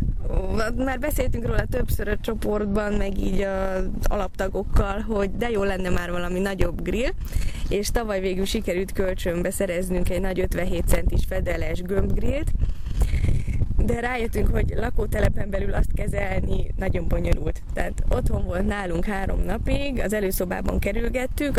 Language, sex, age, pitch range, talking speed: Hungarian, female, 20-39, 190-225 Hz, 135 wpm